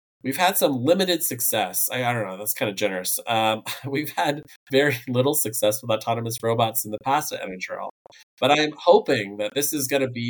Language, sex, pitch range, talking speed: English, male, 100-135 Hz, 205 wpm